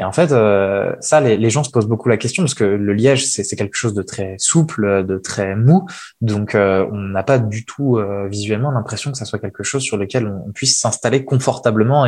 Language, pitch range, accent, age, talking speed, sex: French, 100-125 Hz, French, 20-39, 245 wpm, male